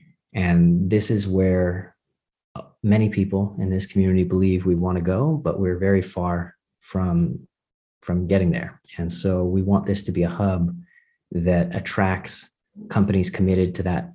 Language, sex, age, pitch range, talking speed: English, male, 30-49, 90-100 Hz, 155 wpm